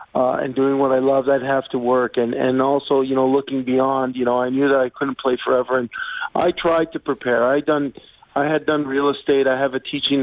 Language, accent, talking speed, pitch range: English, American, 245 wpm, 130-145 Hz